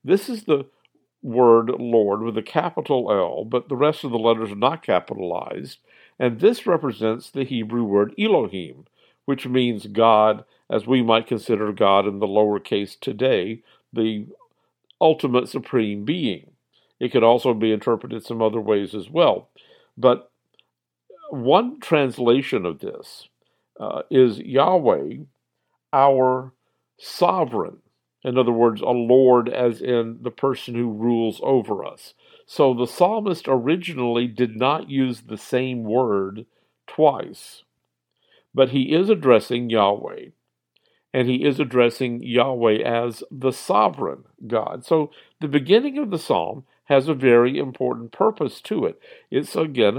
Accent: American